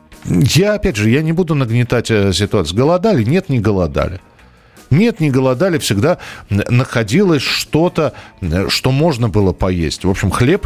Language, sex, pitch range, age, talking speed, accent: Russian, male, 100-140 Hz, 40-59, 140 wpm, native